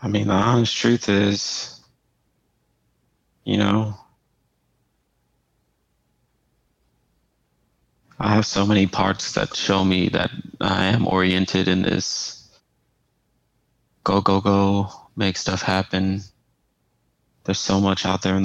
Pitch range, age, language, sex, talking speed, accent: 90-100 Hz, 30-49, English, male, 110 wpm, American